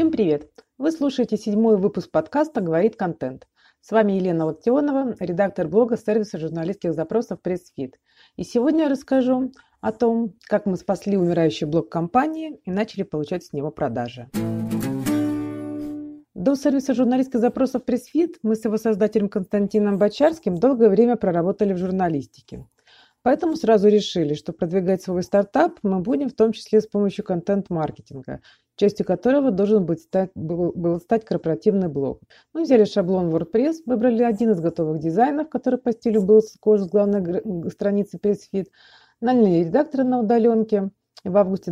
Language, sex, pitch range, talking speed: Russian, female, 175-235 Hz, 150 wpm